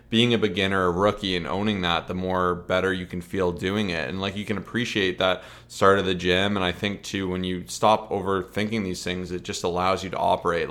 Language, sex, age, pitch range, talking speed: English, male, 20-39, 90-105 Hz, 235 wpm